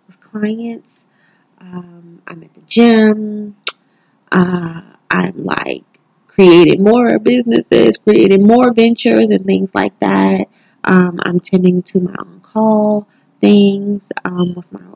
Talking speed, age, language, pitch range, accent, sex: 120 wpm, 20-39, English, 155-190 Hz, American, female